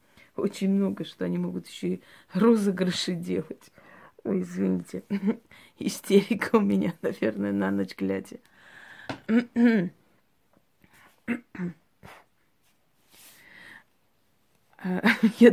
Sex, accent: female, native